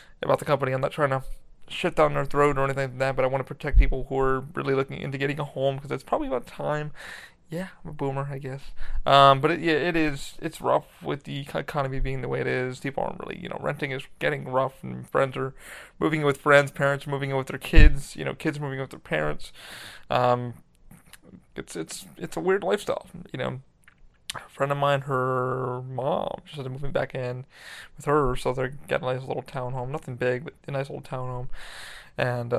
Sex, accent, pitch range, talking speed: male, American, 130-150 Hz, 235 wpm